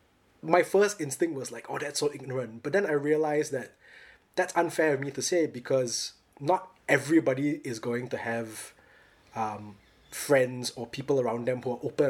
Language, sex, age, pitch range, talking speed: English, male, 20-39, 120-150 Hz, 180 wpm